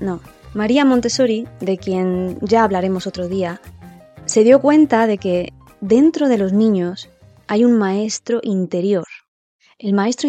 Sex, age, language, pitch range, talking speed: female, 20-39, Spanish, 180-215 Hz, 140 wpm